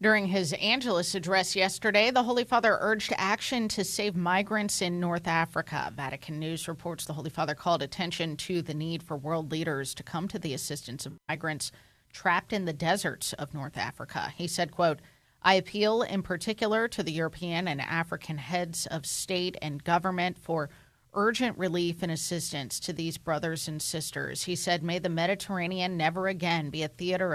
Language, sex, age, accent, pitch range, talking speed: English, female, 30-49, American, 155-185 Hz, 180 wpm